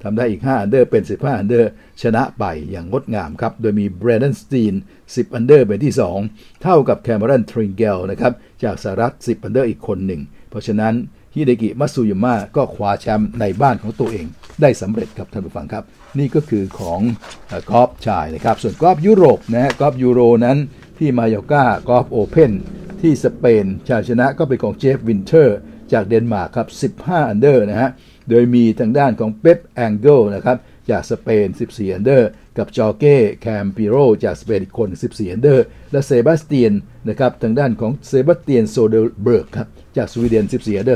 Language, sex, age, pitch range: Thai, male, 60-79, 105-130 Hz